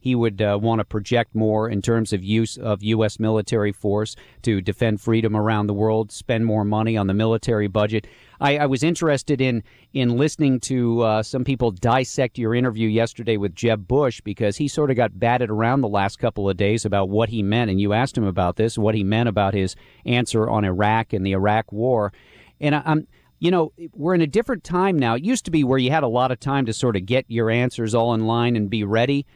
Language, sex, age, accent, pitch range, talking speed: English, male, 40-59, American, 105-130 Hz, 230 wpm